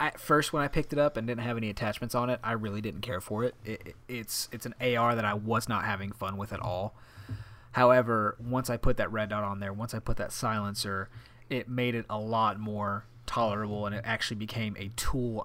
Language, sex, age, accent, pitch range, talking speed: English, male, 30-49, American, 105-125 Hz, 240 wpm